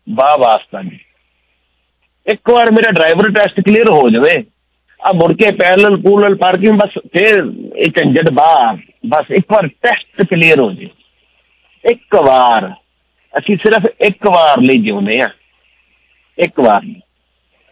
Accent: Indian